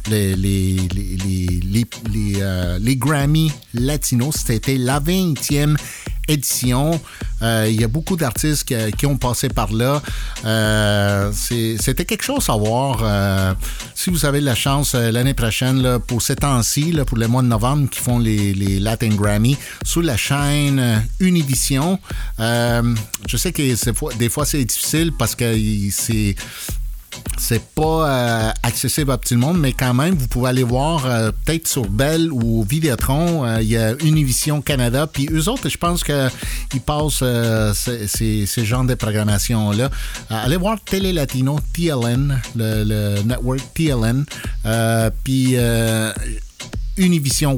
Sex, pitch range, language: male, 110-145 Hz, English